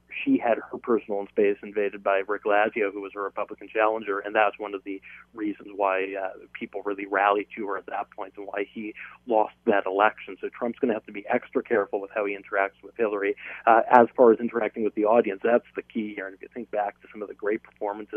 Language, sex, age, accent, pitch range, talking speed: English, male, 30-49, American, 100-115 Hz, 245 wpm